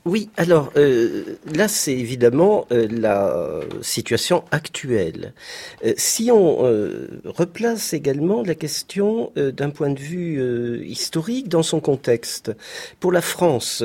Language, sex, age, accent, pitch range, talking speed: French, male, 50-69, French, 125-195 Hz, 135 wpm